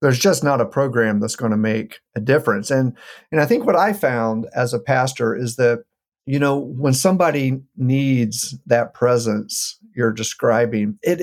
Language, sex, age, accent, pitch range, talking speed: English, male, 50-69, American, 115-140 Hz, 175 wpm